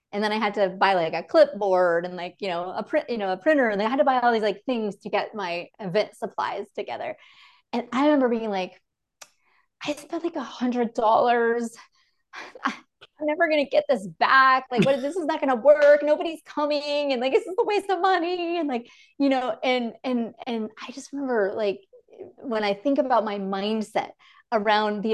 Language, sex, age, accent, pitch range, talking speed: English, female, 30-49, American, 195-290 Hz, 210 wpm